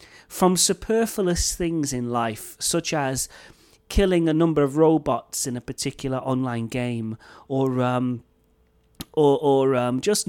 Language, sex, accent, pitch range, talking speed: English, male, British, 125-165 Hz, 135 wpm